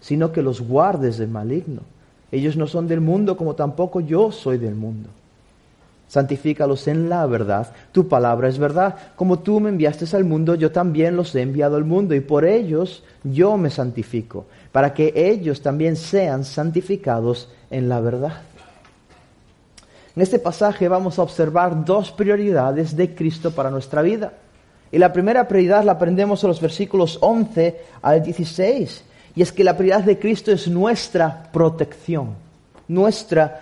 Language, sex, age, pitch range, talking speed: Spanish, male, 30-49, 145-195 Hz, 160 wpm